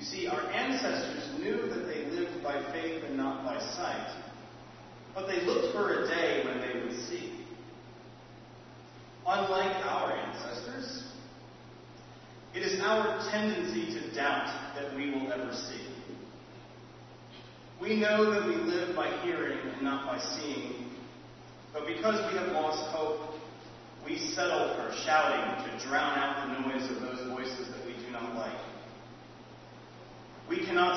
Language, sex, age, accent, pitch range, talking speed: English, male, 30-49, American, 130-210 Hz, 135 wpm